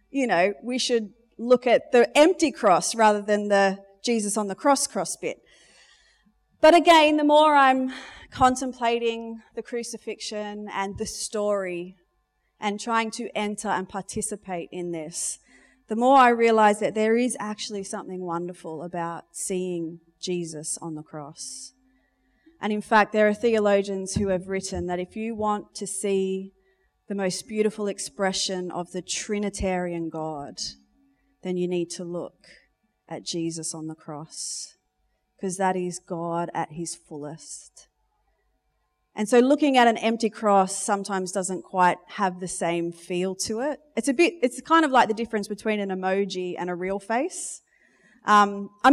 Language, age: English, 30-49